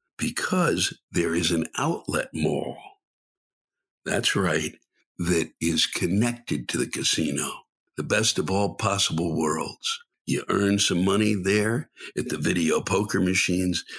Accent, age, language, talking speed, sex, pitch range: American, 60-79, English, 130 wpm, male, 90-120 Hz